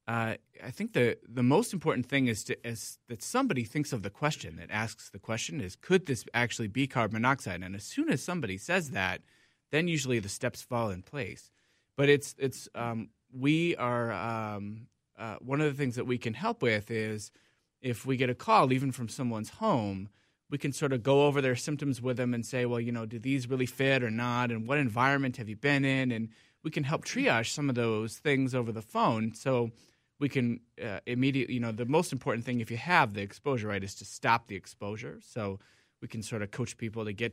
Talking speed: 220 wpm